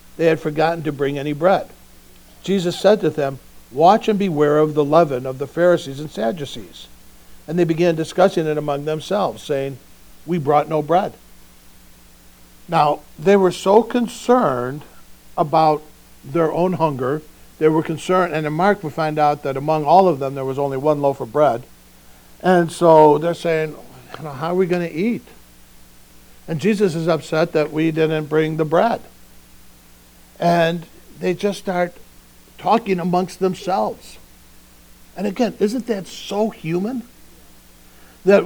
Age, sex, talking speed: 60-79, male, 155 wpm